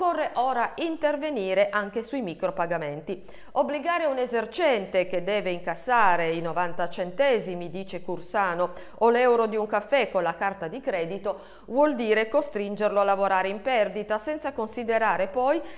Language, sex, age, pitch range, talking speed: Italian, female, 40-59, 180-250 Hz, 140 wpm